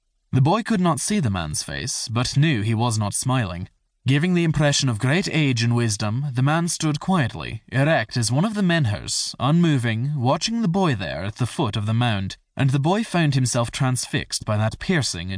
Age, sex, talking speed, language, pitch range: 20-39, male, 205 wpm, English, 105-145 Hz